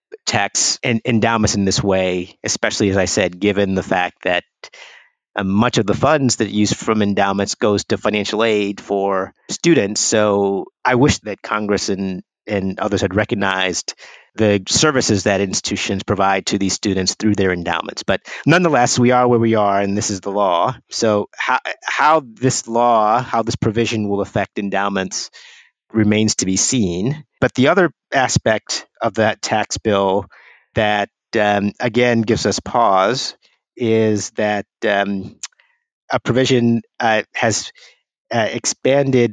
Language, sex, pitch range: English, male, 100-115 Hz